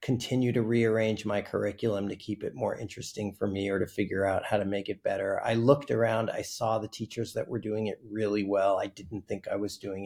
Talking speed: 240 wpm